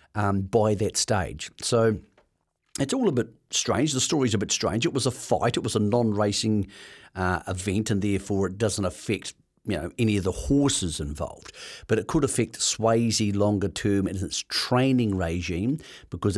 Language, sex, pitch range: English, male, 95-115 Hz